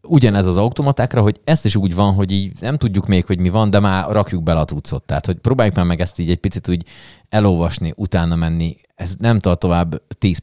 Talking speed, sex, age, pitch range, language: 225 wpm, male, 30-49, 75-100 Hz, Hungarian